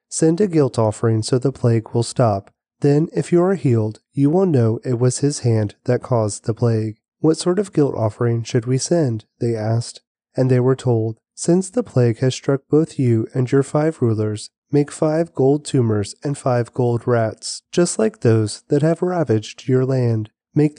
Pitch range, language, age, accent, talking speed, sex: 115-150 Hz, English, 30-49, American, 195 wpm, male